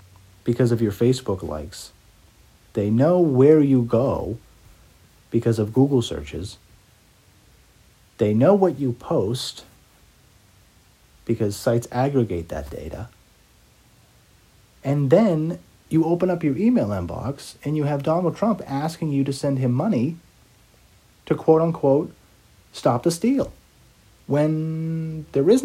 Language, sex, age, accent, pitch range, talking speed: English, male, 50-69, American, 100-145 Hz, 120 wpm